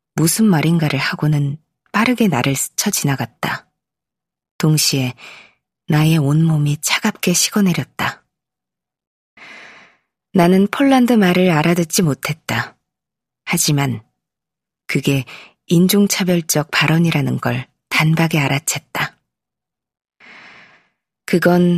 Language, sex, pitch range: Korean, female, 140-190 Hz